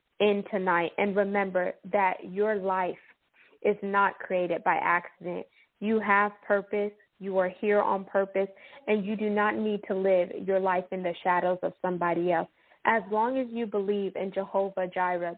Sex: female